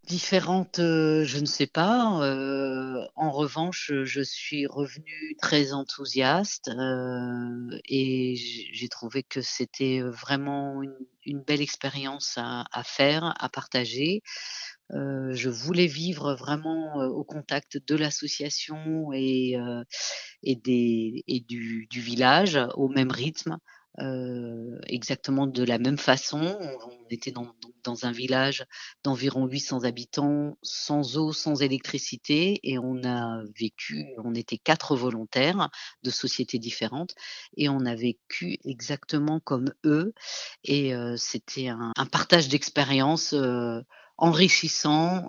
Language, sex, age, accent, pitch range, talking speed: French, female, 40-59, French, 125-150 Hz, 125 wpm